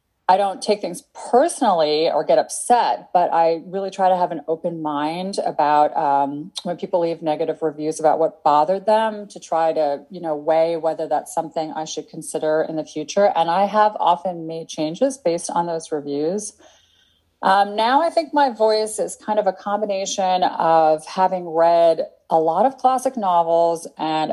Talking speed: 180 wpm